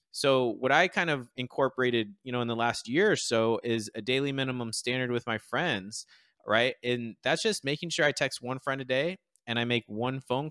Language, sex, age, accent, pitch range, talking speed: English, male, 20-39, American, 115-140 Hz, 225 wpm